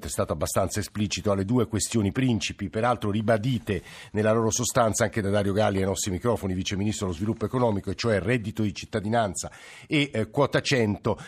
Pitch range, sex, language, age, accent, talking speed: 100-125 Hz, male, Italian, 50-69, native, 180 wpm